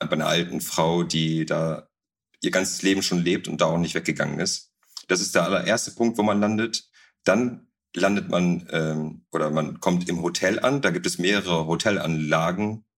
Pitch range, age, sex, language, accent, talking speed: 85-100 Hz, 40-59, male, German, German, 185 wpm